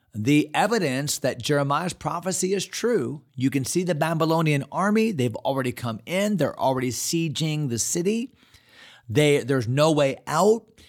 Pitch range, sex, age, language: 115-160 Hz, male, 40-59, English